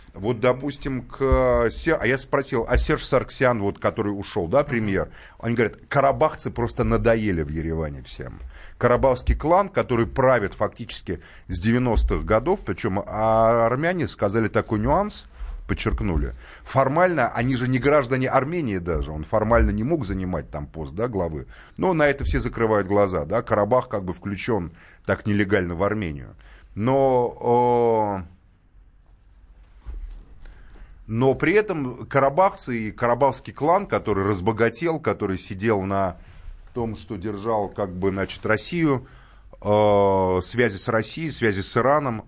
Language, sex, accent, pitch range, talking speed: Russian, male, native, 95-125 Hz, 135 wpm